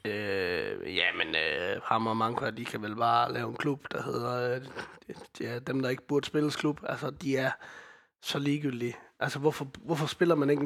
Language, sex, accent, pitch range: Danish, male, native, 135-160 Hz